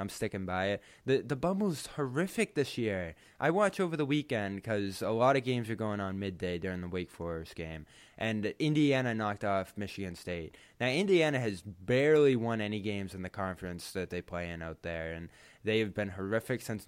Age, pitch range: 20-39, 95-120 Hz